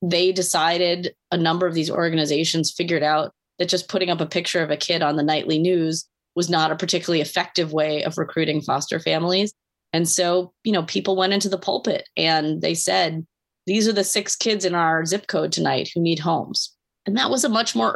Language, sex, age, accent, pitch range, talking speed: English, female, 30-49, American, 160-195 Hz, 210 wpm